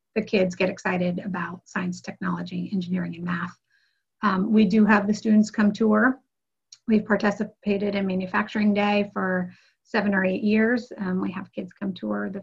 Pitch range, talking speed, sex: 190-220 Hz, 170 wpm, female